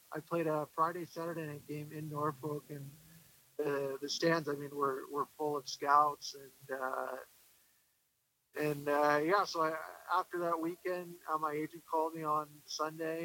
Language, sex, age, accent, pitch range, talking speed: English, male, 50-69, American, 140-160 Hz, 170 wpm